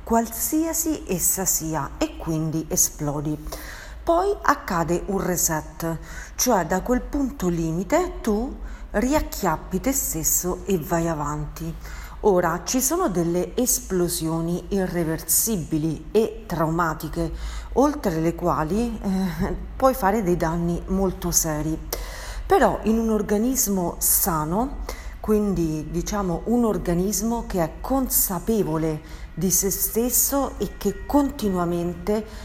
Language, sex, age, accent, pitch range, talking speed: Italian, female, 40-59, native, 170-225 Hz, 105 wpm